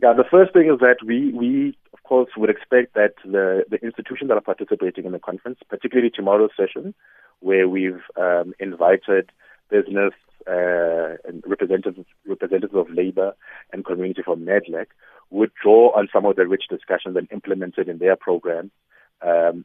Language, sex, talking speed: English, male, 165 wpm